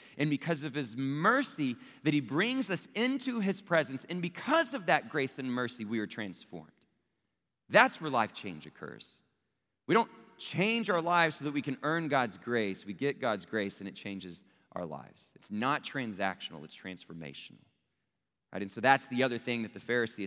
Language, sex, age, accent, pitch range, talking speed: English, male, 30-49, American, 110-150 Hz, 185 wpm